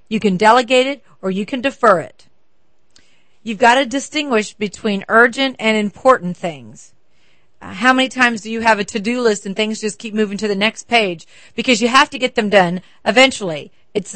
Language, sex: English, female